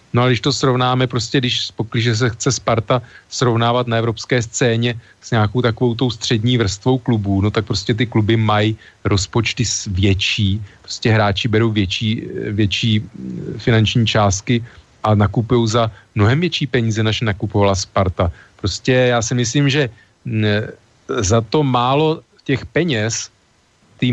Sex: male